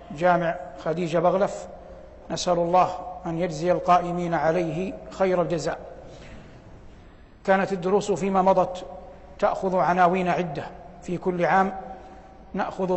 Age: 60-79